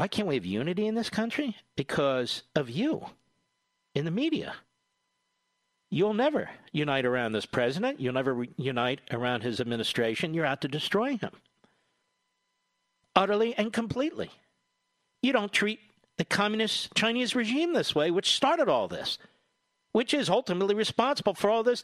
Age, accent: 50-69, American